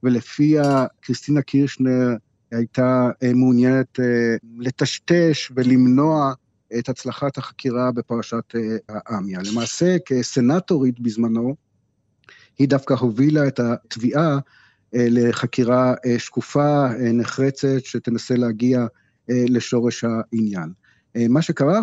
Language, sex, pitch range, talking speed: Hebrew, male, 120-140 Hz, 80 wpm